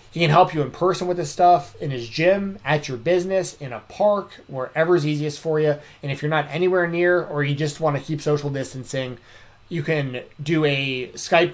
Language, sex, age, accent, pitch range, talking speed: English, male, 20-39, American, 130-155 Hz, 220 wpm